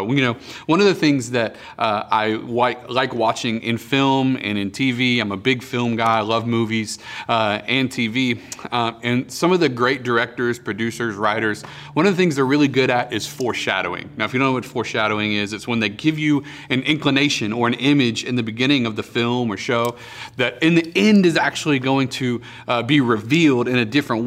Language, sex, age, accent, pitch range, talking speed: English, male, 30-49, American, 110-130 Hz, 215 wpm